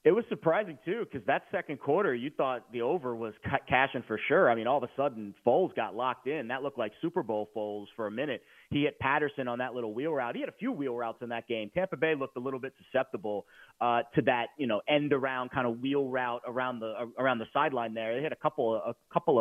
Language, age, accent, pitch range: English, 30-49, American, 115-140 Hz